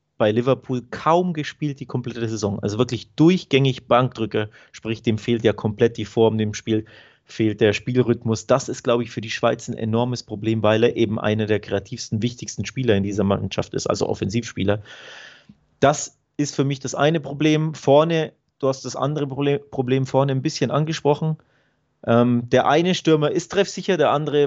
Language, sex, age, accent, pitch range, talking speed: German, male, 30-49, German, 115-150 Hz, 175 wpm